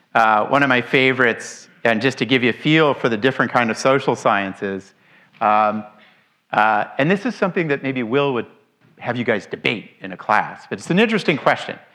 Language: English